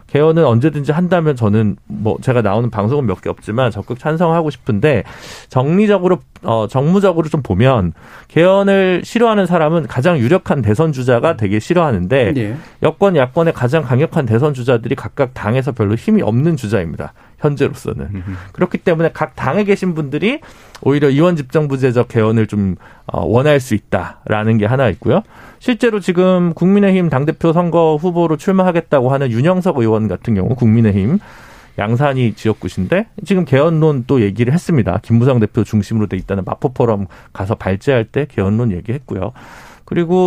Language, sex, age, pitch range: Korean, male, 40-59, 110-170 Hz